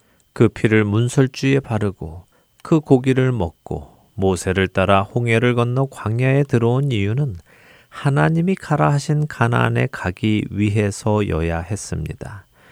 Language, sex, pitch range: Korean, male, 90-130 Hz